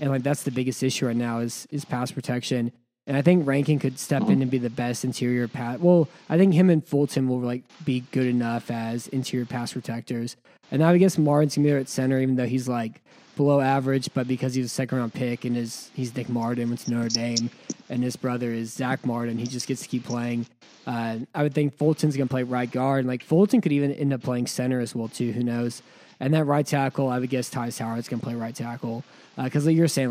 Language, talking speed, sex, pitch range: English, 250 wpm, male, 120-135 Hz